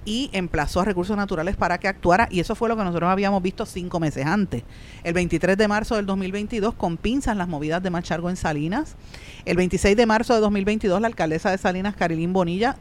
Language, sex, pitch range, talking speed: Spanish, female, 160-205 Hz, 210 wpm